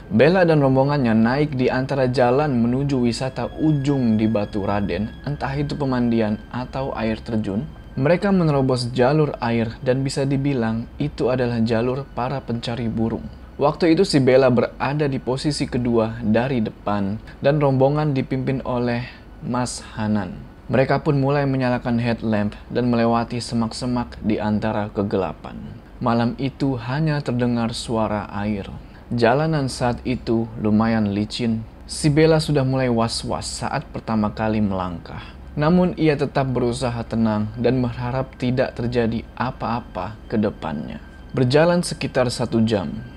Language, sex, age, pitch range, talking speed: Indonesian, male, 20-39, 115-140 Hz, 130 wpm